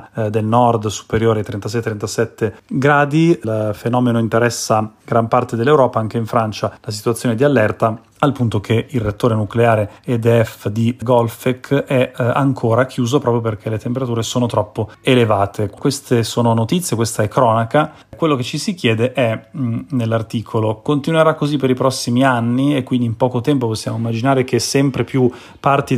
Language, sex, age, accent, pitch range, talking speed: Italian, male, 30-49, native, 110-130 Hz, 155 wpm